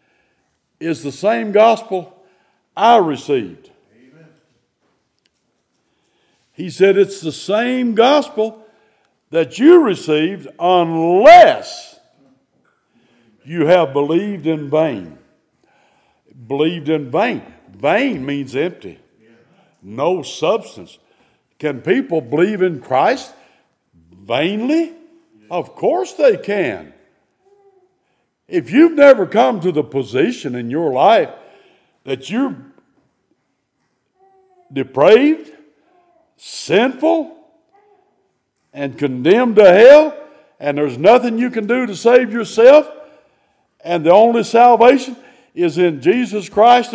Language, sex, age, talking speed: English, male, 60-79, 95 wpm